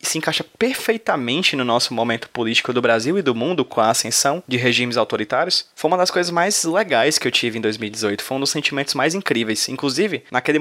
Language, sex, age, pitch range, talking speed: Portuguese, male, 20-39, 115-150 Hz, 210 wpm